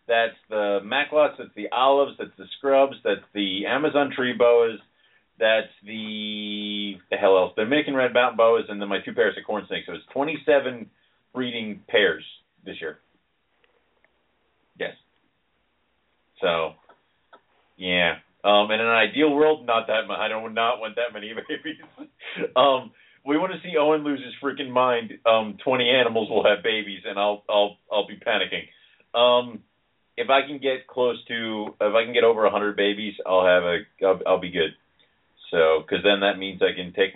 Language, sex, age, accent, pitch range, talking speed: English, male, 40-59, American, 95-125 Hz, 180 wpm